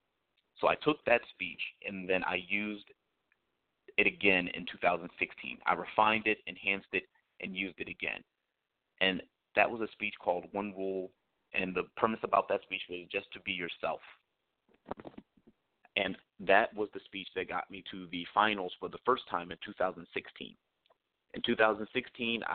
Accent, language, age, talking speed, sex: American, English, 30-49, 160 wpm, male